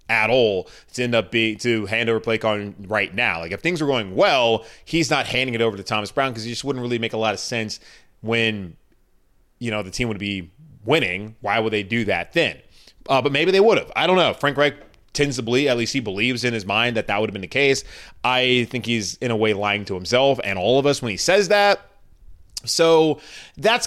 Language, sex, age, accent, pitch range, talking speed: English, male, 20-39, American, 110-130 Hz, 245 wpm